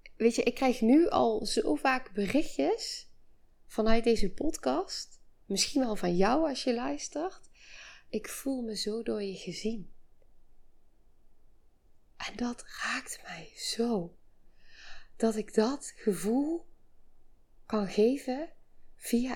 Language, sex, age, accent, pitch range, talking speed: Dutch, female, 20-39, Dutch, 210-265 Hz, 120 wpm